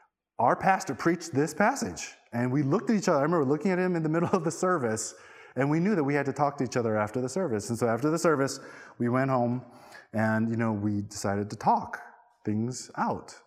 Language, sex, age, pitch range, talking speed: English, male, 20-39, 105-155 Hz, 235 wpm